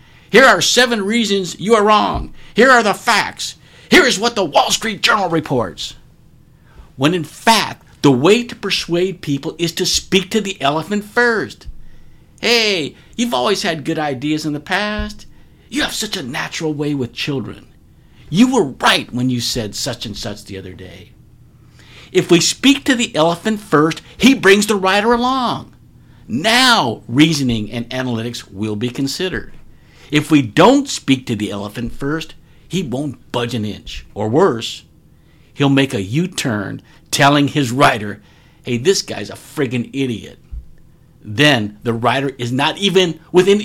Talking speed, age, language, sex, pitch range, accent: 160 wpm, 60-79, English, male, 120-190 Hz, American